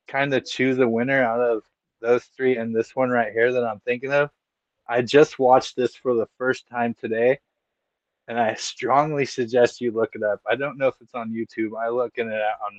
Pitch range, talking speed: 120-150 Hz, 220 wpm